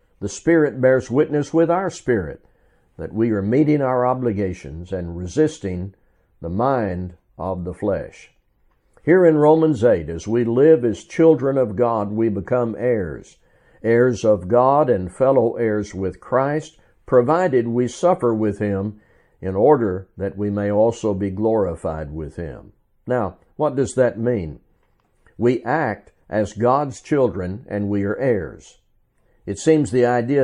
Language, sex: English, male